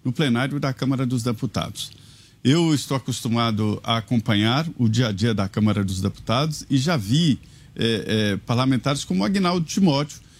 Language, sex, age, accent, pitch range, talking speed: Portuguese, male, 50-69, Brazilian, 125-160 Hz, 160 wpm